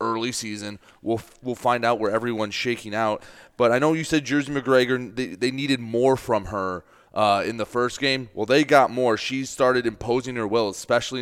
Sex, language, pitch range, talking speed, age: male, English, 110-130 Hz, 205 wpm, 30-49